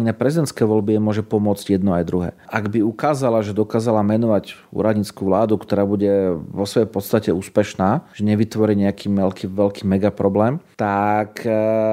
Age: 30-49